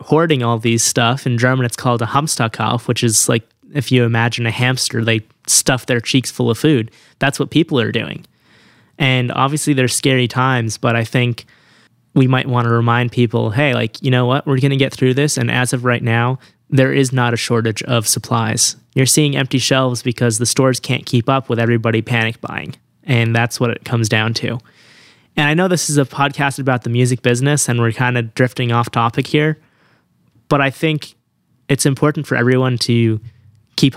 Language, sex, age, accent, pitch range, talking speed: English, male, 20-39, American, 115-135 Hz, 205 wpm